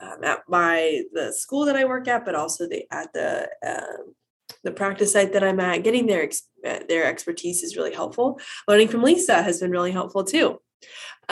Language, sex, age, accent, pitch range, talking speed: English, female, 20-39, American, 170-220 Hz, 195 wpm